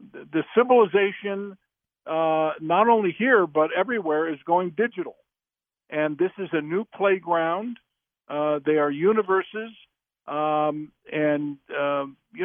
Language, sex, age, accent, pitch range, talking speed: English, male, 50-69, American, 150-190 Hz, 120 wpm